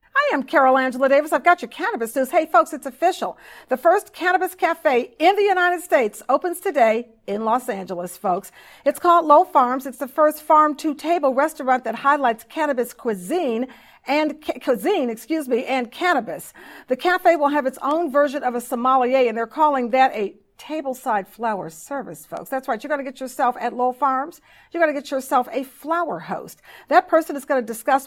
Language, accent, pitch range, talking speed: English, American, 245-305 Hz, 195 wpm